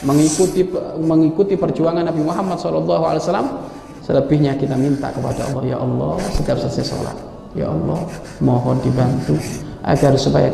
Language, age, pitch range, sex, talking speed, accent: Indonesian, 40-59, 110-145 Hz, male, 130 wpm, native